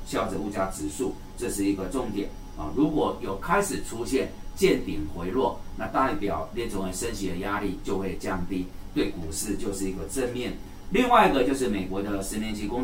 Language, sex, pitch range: Chinese, male, 95-120 Hz